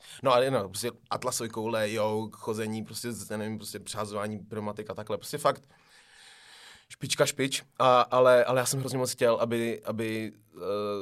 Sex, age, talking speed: male, 20-39, 160 wpm